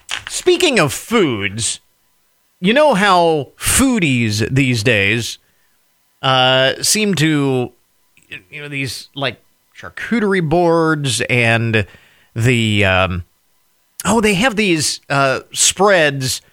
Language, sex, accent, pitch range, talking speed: English, male, American, 125-170 Hz, 100 wpm